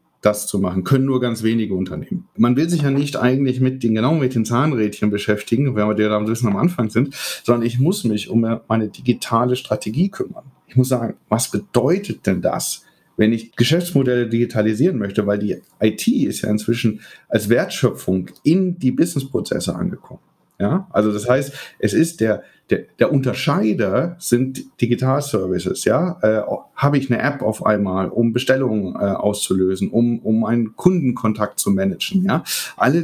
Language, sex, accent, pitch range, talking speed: German, male, German, 110-135 Hz, 165 wpm